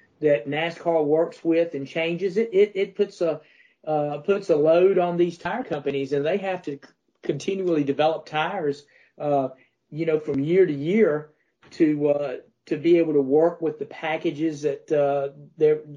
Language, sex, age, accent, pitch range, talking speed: English, male, 50-69, American, 140-165 Hz, 175 wpm